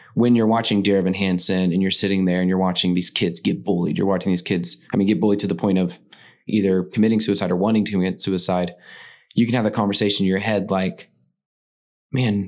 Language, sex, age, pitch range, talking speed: English, male, 20-39, 90-105 Hz, 225 wpm